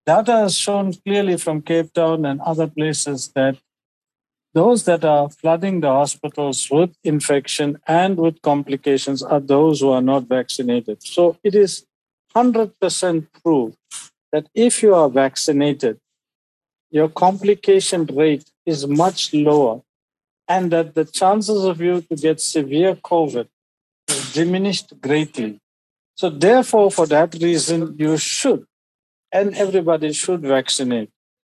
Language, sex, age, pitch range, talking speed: English, male, 50-69, 145-180 Hz, 130 wpm